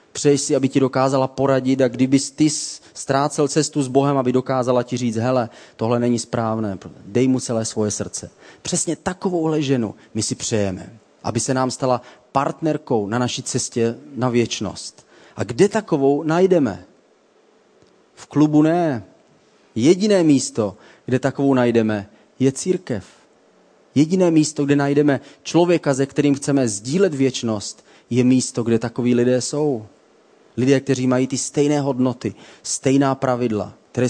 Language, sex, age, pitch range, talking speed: Czech, male, 30-49, 125-145 Hz, 145 wpm